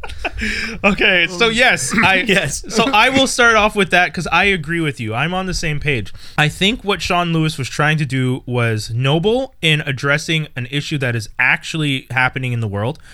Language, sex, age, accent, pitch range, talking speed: English, male, 20-39, American, 125-160 Hz, 200 wpm